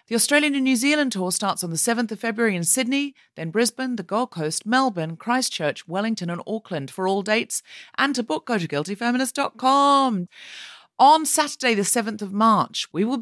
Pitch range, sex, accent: 175-255 Hz, female, British